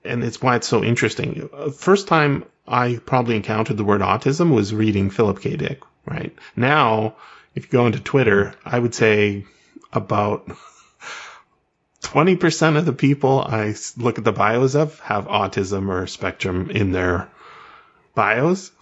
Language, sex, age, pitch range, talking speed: English, male, 30-49, 105-130 Hz, 150 wpm